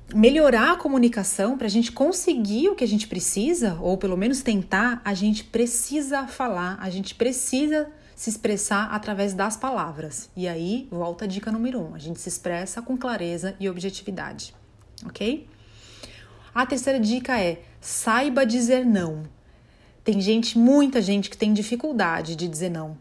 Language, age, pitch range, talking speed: Portuguese, 30-49, 195-255 Hz, 160 wpm